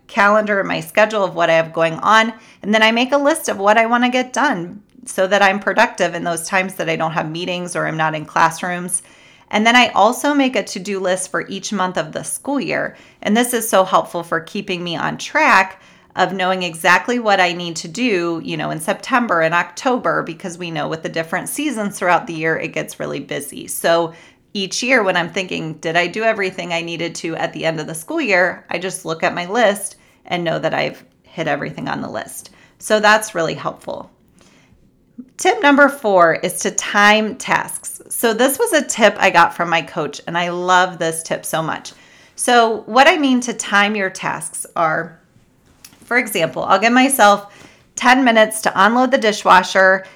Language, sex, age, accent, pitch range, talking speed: English, female, 30-49, American, 175-225 Hz, 210 wpm